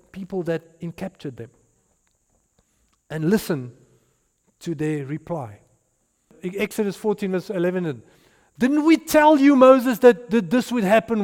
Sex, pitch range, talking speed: male, 170-240 Hz, 125 wpm